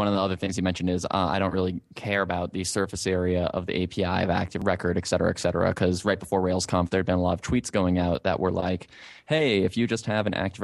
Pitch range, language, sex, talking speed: 90-100 Hz, English, male, 280 wpm